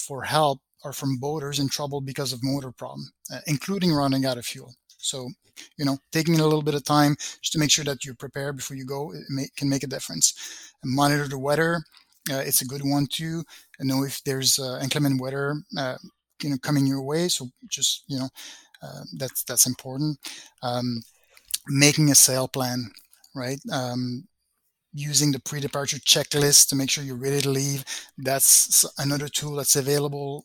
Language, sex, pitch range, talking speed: English, male, 135-150 Hz, 185 wpm